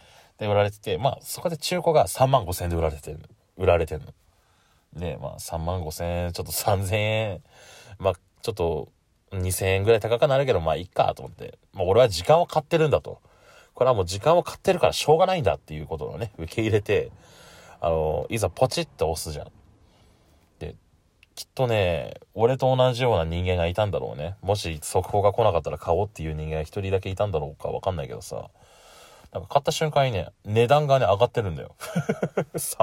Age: 20-39